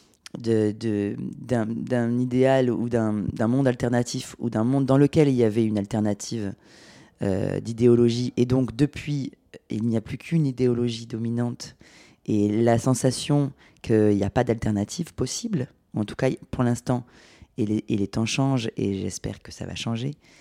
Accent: French